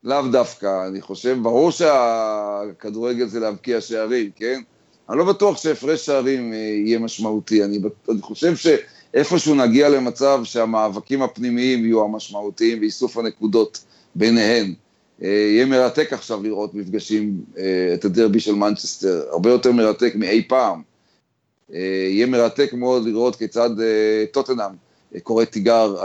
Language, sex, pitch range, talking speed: Hebrew, male, 105-135 Hz, 115 wpm